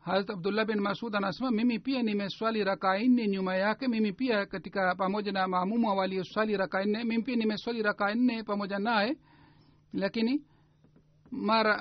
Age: 60-79